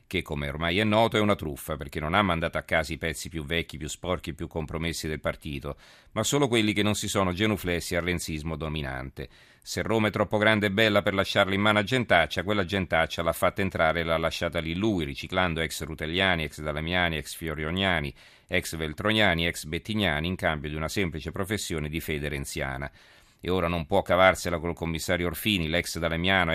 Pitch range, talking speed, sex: 80-95 Hz, 200 wpm, male